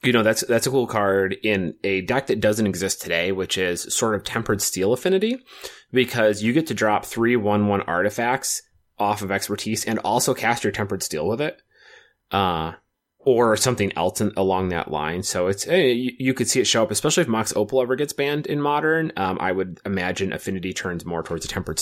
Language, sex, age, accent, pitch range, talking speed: English, male, 30-49, American, 95-135 Hz, 210 wpm